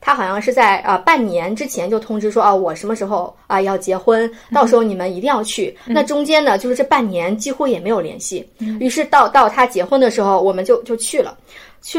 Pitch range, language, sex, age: 200-270 Hz, Chinese, female, 20-39